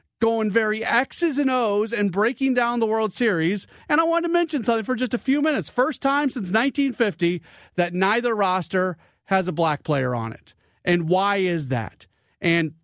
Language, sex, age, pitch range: English, male, 40-59, 140-195 Hz